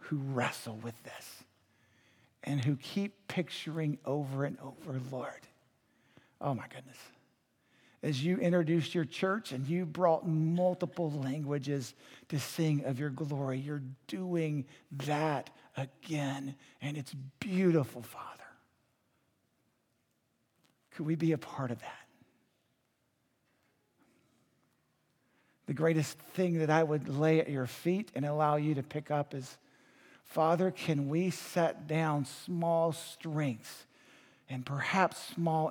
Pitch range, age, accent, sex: 130-160 Hz, 50-69, American, male